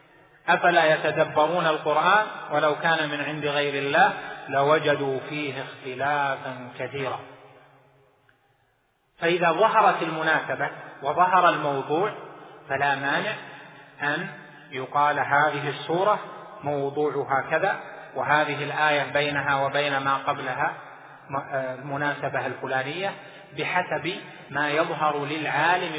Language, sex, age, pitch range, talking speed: Arabic, male, 30-49, 140-165 Hz, 90 wpm